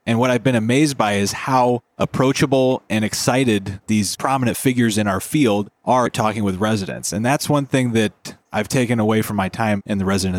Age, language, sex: 30-49, English, male